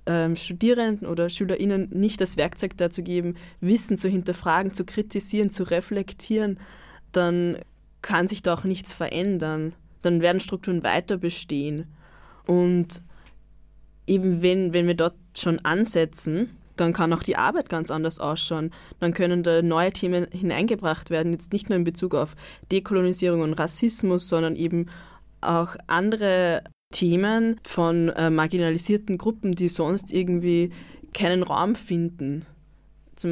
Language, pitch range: English, 170-195 Hz